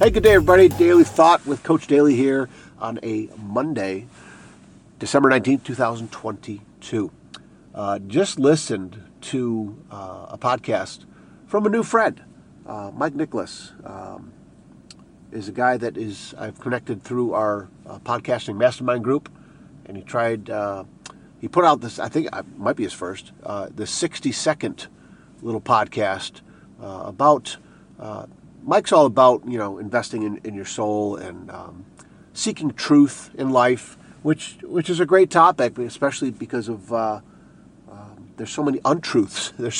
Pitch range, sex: 105-145 Hz, male